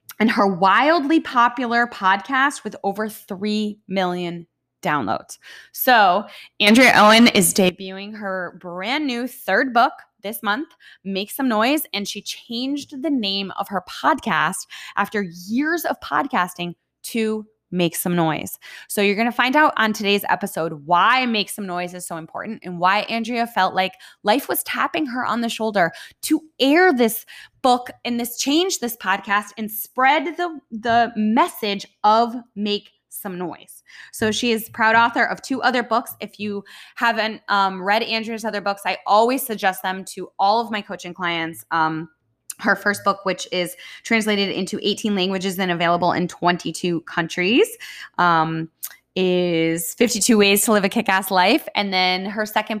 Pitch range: 185-240 Hz